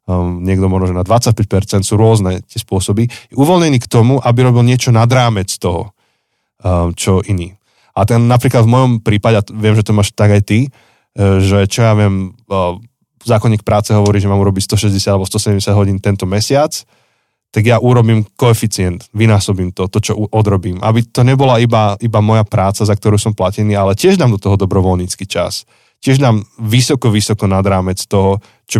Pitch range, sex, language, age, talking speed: 95-115 Hz, male, Slovak, 20-39, 180 wpm